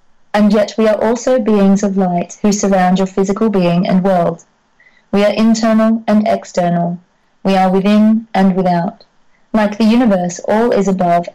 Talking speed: 165 wpm